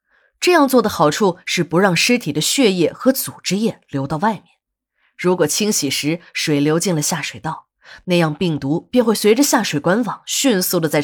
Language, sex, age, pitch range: Chinese, female, 20-39, 150-215 Hz